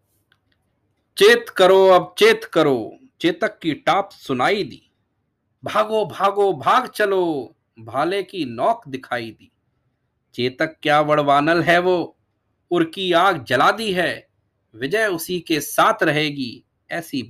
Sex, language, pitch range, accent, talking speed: male, Hindi, 130-195 Hz, native, 120 wpm